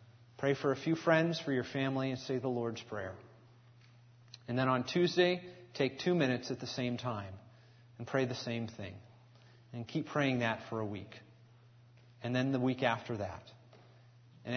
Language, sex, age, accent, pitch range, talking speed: English, male, 30-49, American, 120-140 Hz, 175 wpm